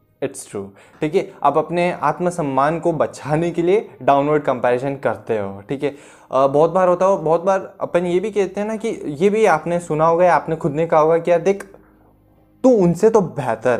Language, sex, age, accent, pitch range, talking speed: Hindi, male, 20-39, native, 135-180 Hz, 200 wpm